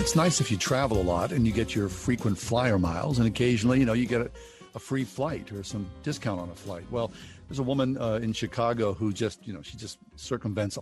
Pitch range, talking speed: 105-130 Hz, 245 wpm